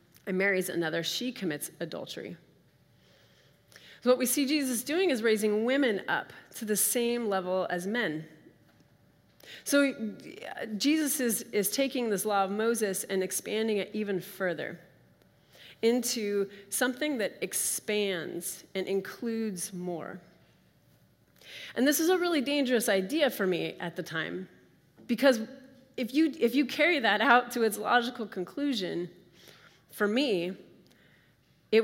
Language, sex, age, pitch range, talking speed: English, female, 30-49, 180-240 Hz, 130 wpm